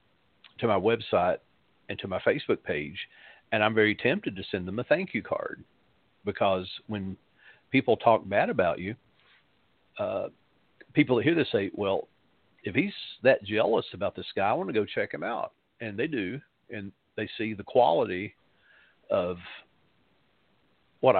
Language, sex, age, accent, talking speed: English, male, 50-69, American, 160 wpm